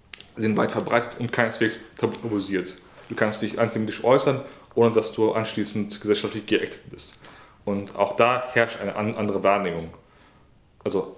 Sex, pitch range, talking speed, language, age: male, 100-115 Hz, 140 wpm, German, 30-49